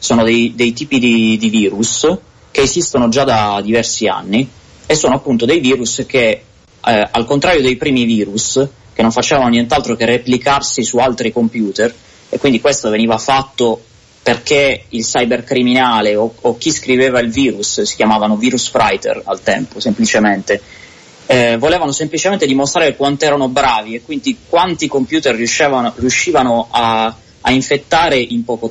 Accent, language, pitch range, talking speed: native, Italian, 115-140 Hz, 155 wpm